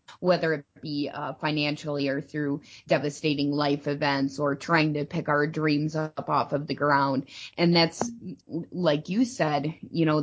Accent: American